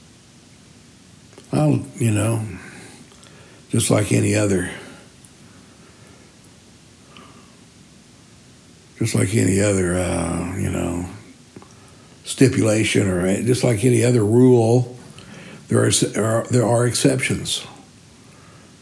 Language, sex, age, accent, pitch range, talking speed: English, male, 60-79, American, 95-135 Hz, 85 wpm